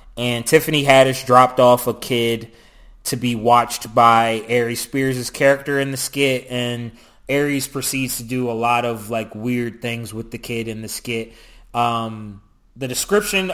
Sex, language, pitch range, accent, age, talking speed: male, English, 125-155 Hz, American, 20-39, 165 wpm